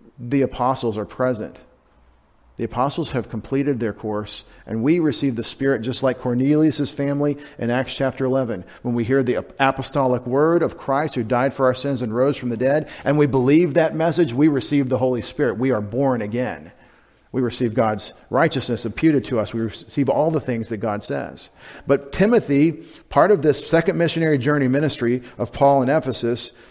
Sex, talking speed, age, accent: male, 185 wpm, 40-59, American